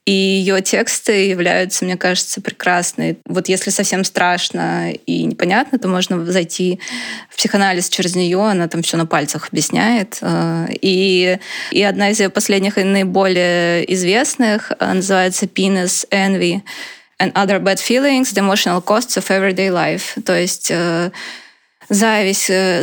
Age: 20-39